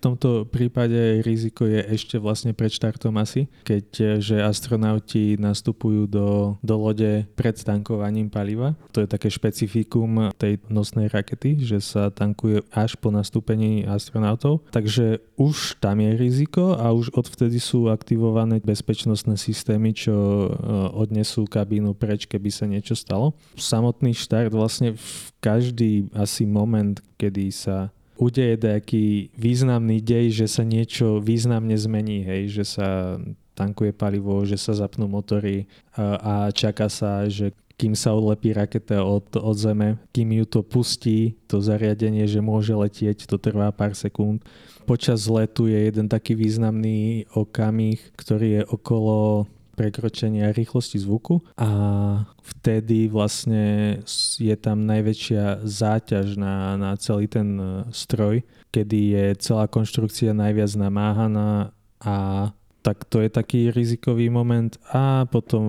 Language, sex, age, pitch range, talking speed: Slovak, male, 20-39, 105-115 Hz, 130 wpm